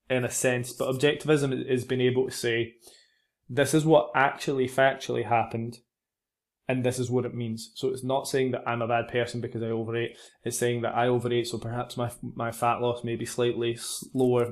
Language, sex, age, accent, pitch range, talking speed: English, male, 20-39, British, 120-135 Hz, 205 wpm